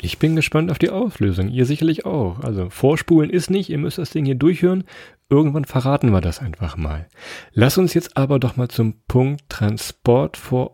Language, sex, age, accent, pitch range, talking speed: German, male, 40-59, German, 110-140 Hz, 195 wpm